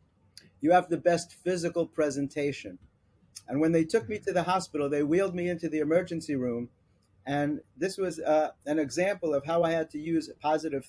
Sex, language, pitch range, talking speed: male, English, 135-170 Hz, 185 wpm